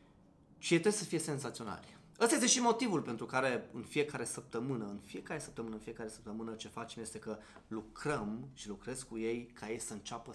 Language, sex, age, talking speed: Romanian, male, 20-39, 195 wpm